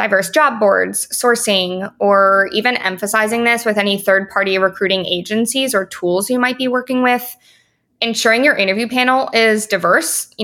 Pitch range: 195-235 Hz